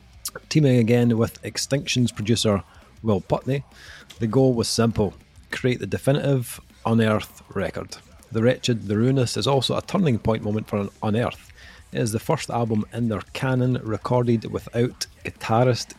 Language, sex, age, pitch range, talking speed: English, male, 30-49, 100-125 Hz, 145 wpm